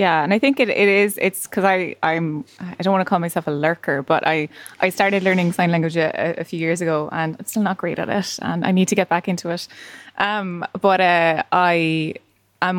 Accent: Irish